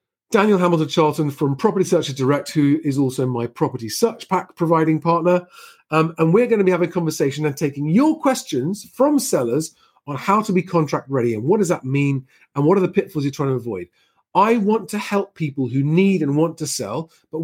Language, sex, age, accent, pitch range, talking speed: English, male, 40-59, British, 140-195 Hz, 215 wpm